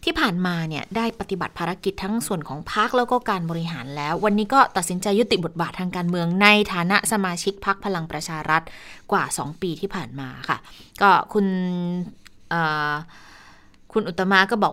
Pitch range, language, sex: 170-215 Hz, Thai, female